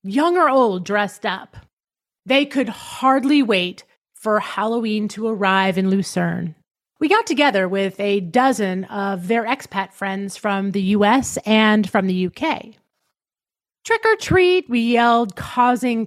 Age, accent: 30-49, American